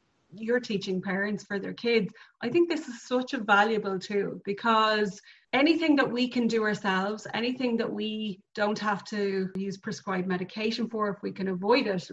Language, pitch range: English, 195-220 Hz